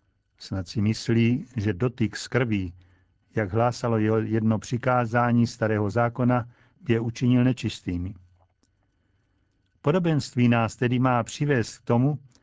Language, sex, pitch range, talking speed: Czech, male, 105-135 Hz, 110 wpm